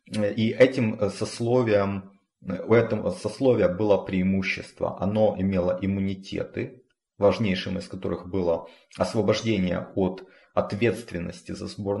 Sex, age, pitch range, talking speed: male, 30-49, 95-115 Hz, 100 wpm